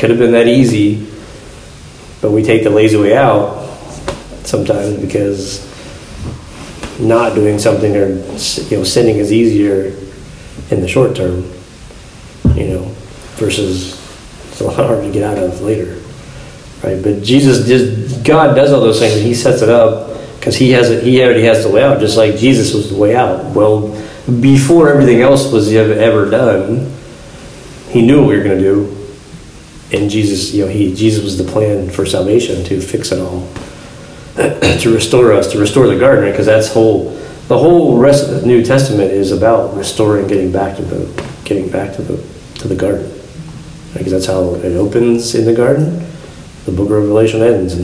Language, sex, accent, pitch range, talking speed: English, male, American, 95-120 Hz, 185 wpm